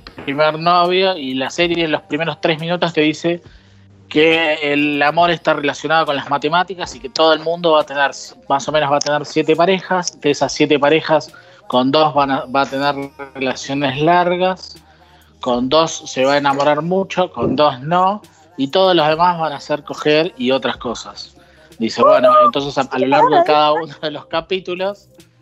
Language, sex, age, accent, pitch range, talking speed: Spanish, male, 20-39, Argentinian, 135-165 Hz, 195 wpm